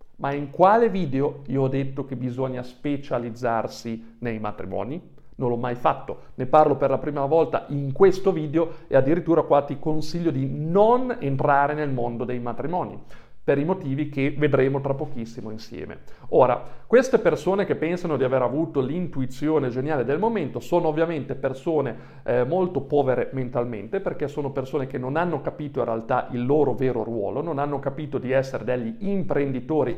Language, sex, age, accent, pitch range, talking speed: Italian, male, 40-59, native, 135-175 Hz, 170 wpm